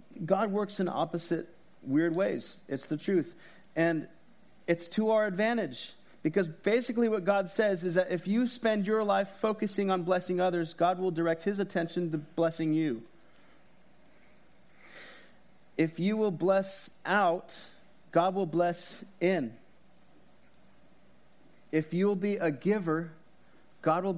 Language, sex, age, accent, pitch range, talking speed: English, male, 40-59, American, 150-195 Hz, 135 wpm